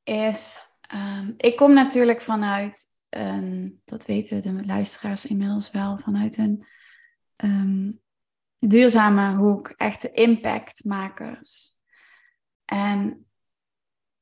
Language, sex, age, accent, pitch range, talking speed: Dutch, female, 20-39, Dutch, 200-225 Hz, 80 wpm